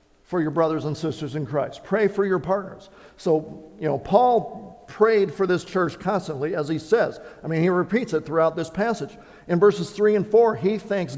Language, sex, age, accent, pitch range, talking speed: English, male, 50-69, American, 160-205 Hz, 205 wpm